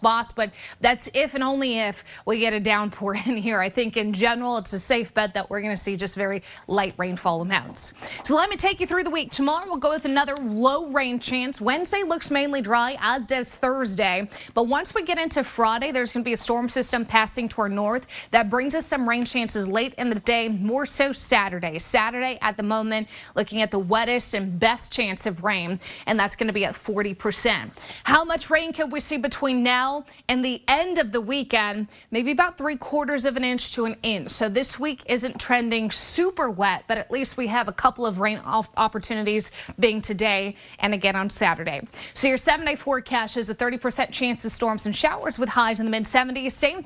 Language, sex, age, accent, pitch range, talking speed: English, female, 30-49, American, 215-265 Hz, 220 wpm